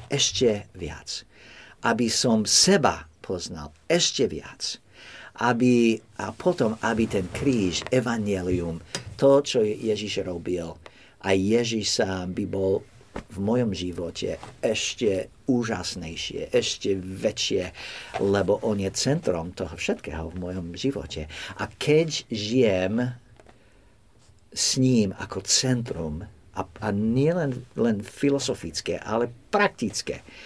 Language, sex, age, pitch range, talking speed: Slovak, male, 50-69, 95-130 Hz, 105 wpm